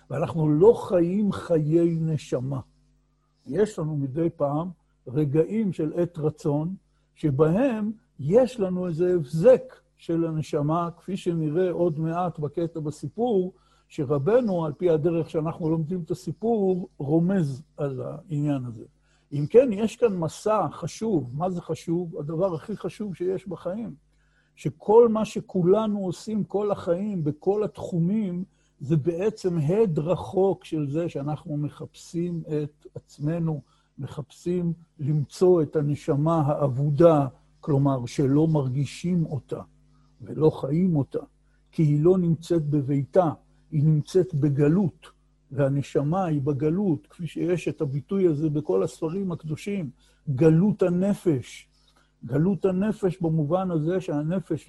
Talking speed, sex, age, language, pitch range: 120 wpm, male, 60-79, Hebrew, 150-180 Hz